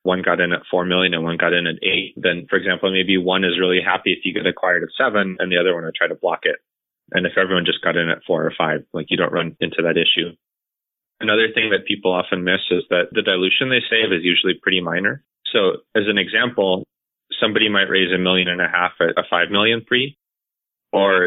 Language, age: English, 20-39